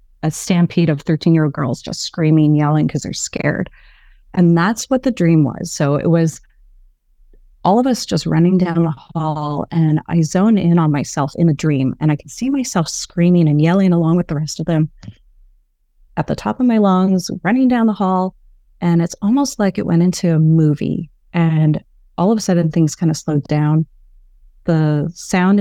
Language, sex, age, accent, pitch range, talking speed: English, female, 30-49, American, 150-180 Hz, 195 wpm